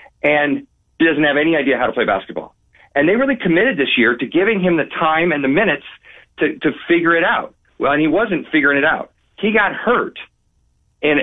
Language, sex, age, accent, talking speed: English, male, 40-59, American, 215 wpm